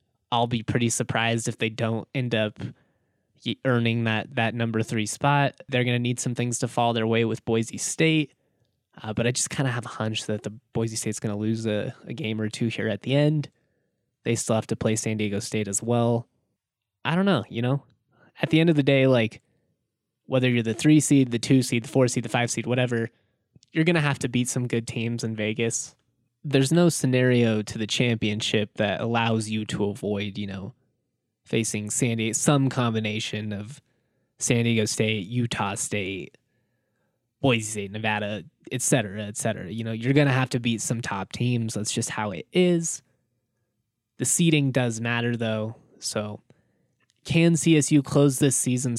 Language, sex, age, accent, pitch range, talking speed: English, male, 20-39, American, 110-130 Hz, 190 wpm